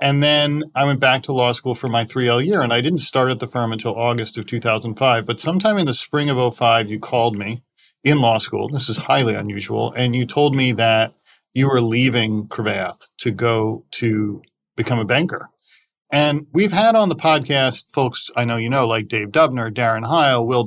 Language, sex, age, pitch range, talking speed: English, male, 40-59, 115-140 Hz, 210 wpm